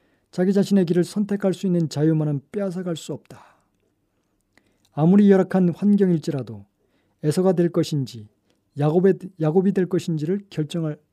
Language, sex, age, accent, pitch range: Korean, male, 40-59, native, 120-190 Hz